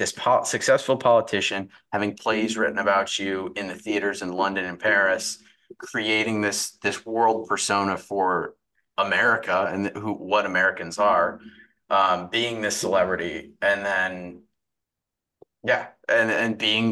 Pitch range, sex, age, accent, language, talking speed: 95-110 Hz, male, 30-49, American, English, 135 wpm